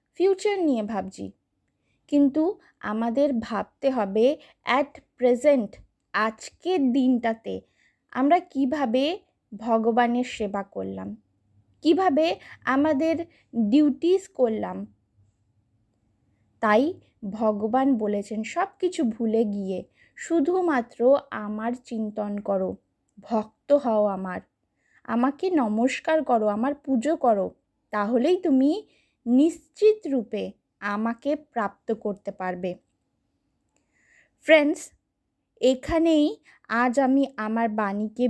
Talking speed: 85 wpm